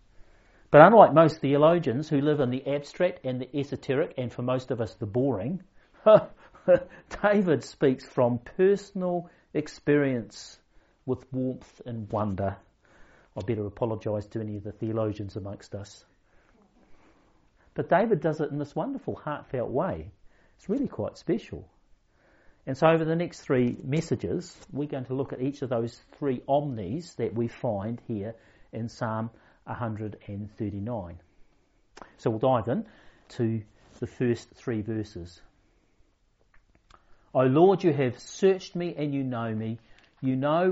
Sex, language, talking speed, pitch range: male, English, 140 wpm, 110-150 Hz